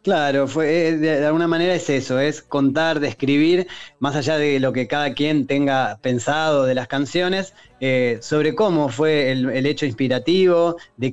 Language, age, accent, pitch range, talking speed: Spanish, 20-39, Argentinian, 130-165 Hz, 165 wpm